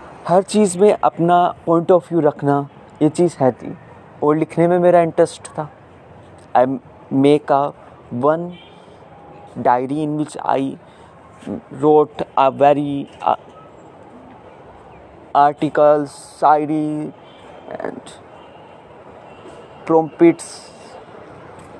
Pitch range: 140-175 Hz